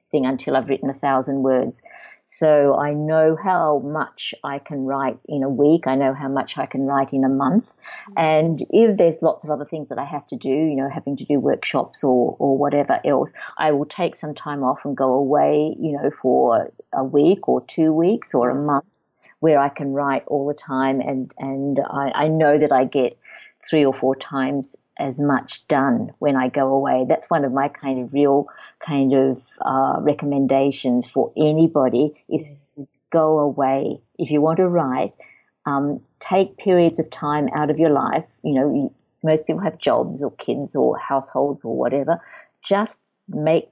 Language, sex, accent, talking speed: English, female, Australian, 195 wpm